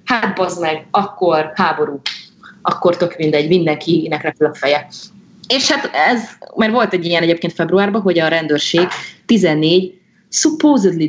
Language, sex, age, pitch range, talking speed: Hungarian, female, 30-49, 150-200 Hz, 135 wpm